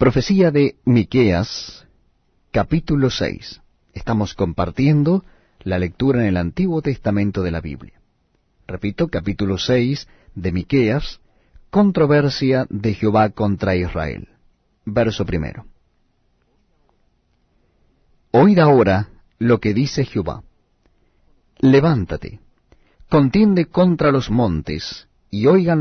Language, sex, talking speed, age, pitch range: Spanish, male, 95 wpm, 40-59, 95-150 Hz